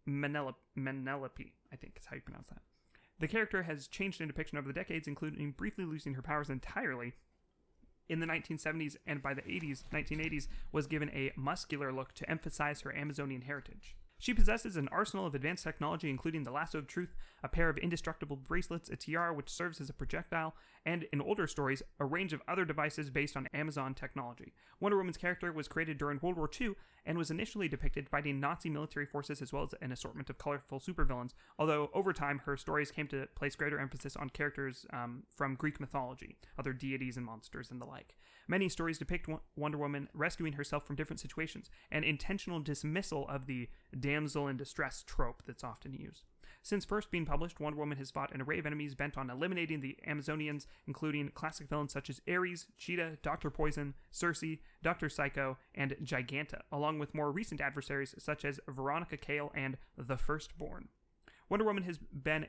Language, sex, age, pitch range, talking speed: English, male, 30-49, 140-160 Hz, 190 wpm